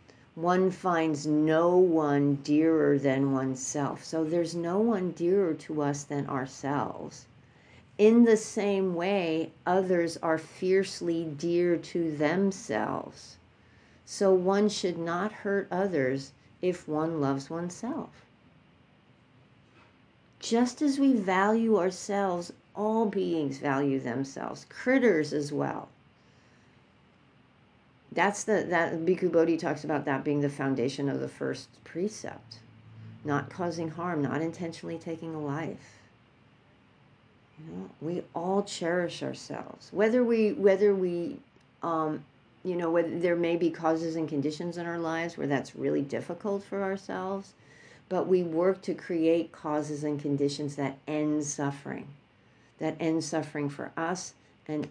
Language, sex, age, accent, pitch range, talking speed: English, female, 50-69, American, 145-185 Hz, 125 wpm